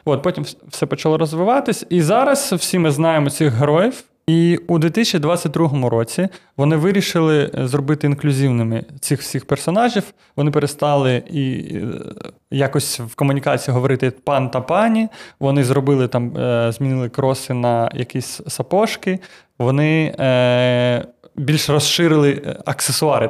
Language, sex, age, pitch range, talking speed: Ukrainian, male, 20-39, 135-160 Hz, 115 wpm